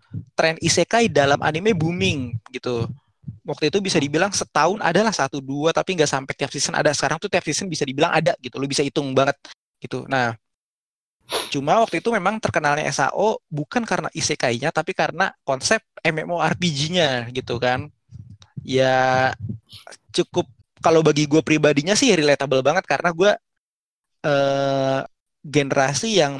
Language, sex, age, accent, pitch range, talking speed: Indonesian, male, 20-39, native, 135-170 Hz, 145 wpm